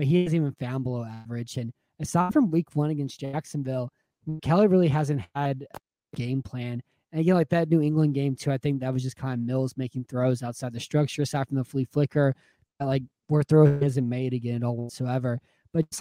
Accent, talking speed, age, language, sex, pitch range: American, 215 wpm, 20-39, English, male, 130-150 Hz